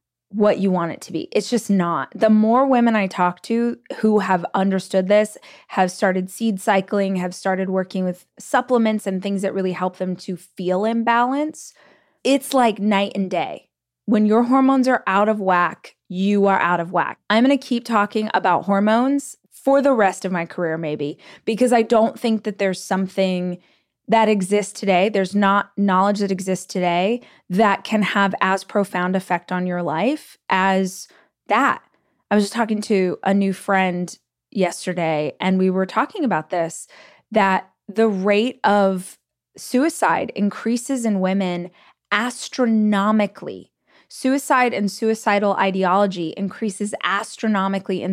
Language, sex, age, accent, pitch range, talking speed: English, female, 20-39, American, 185-225 Hz, 160 wpm